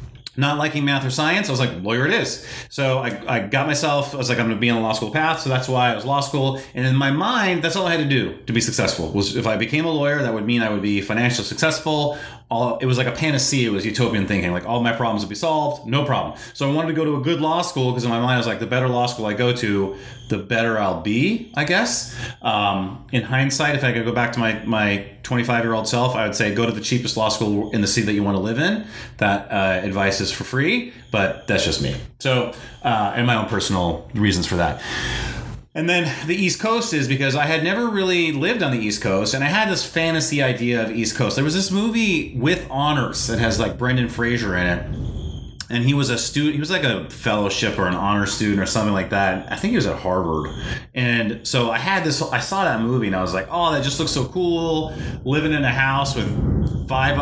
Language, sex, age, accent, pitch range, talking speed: English, male, 30-49, American, 110-145 Hz, 260 wpm